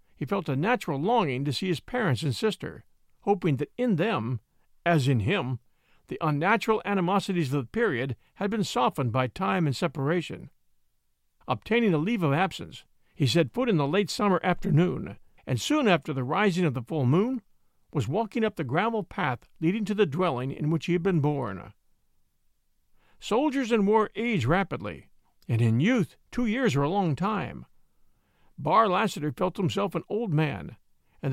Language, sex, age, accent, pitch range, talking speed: English, male, 50-69, American, 145-210 Hz, 175 wpm